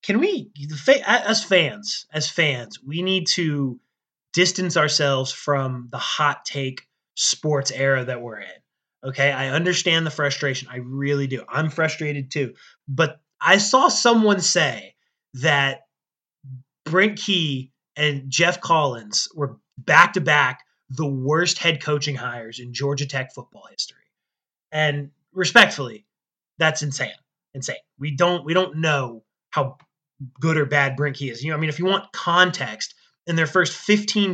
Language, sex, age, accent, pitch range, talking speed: English, male, 20-39, American, 135-175 Hz, 150 wpm